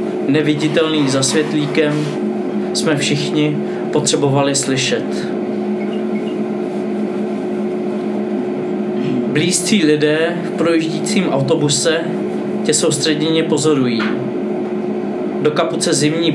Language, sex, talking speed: Czech, male, 65 wpm